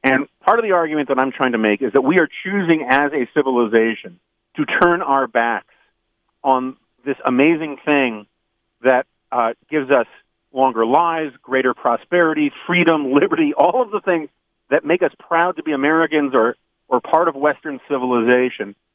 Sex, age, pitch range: male, 40-59, 125-165 Hz